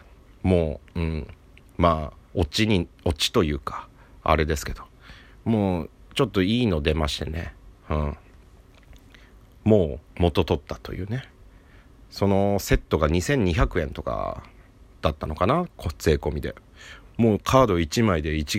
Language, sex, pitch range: Japanese, male, 75-95 Hz